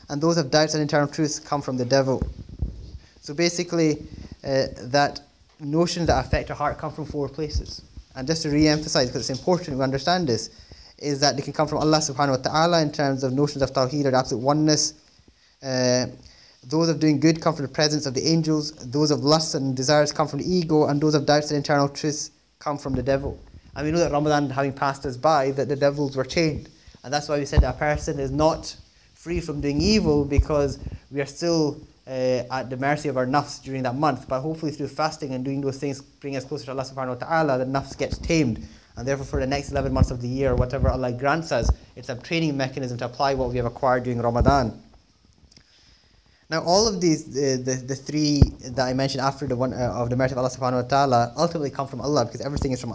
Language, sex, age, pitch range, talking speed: English, male, 20-39, 130-155 Hz, 230 wpm